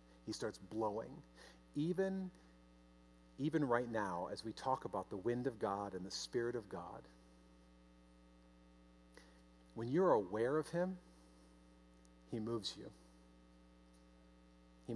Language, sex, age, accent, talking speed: English, male, 50-69, American, 110 wpm